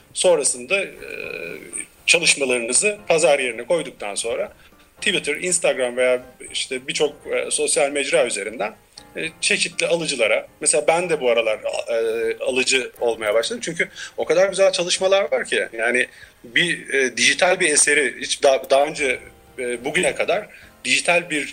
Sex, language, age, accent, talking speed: male, Turkish, 40-59, native, 125 wpm